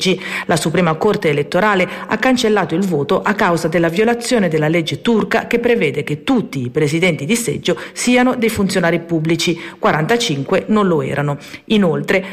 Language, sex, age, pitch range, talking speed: Italian, female, 40-59, 165-205 Hz, 155 wpm